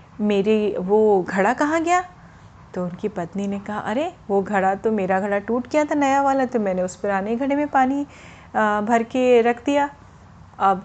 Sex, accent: female, native